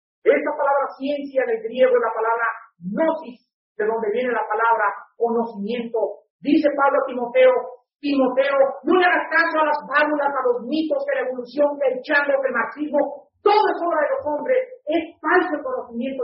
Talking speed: 170 wpm